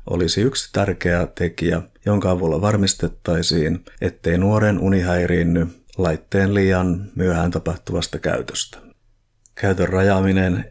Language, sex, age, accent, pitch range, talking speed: Finnish, male, 50-69, native, 85-105 Hz, 95 wpm